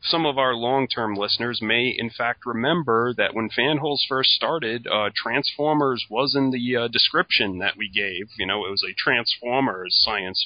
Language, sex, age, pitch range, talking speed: English, male, 30-49, 105-135 Hz, 185 wpm